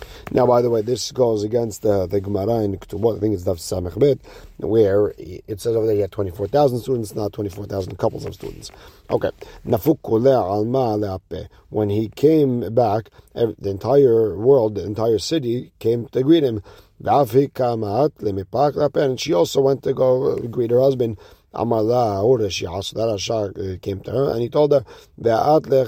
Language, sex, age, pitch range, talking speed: English, male, 50-69, 100-130 Hz, 145 wpm